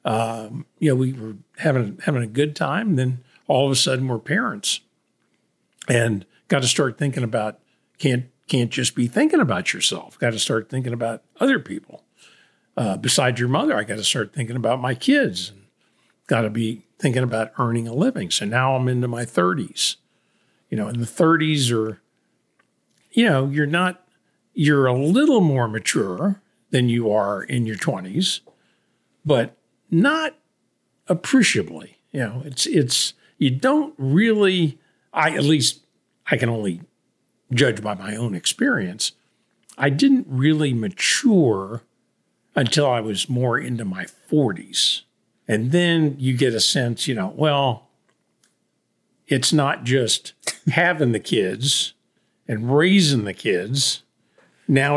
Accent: American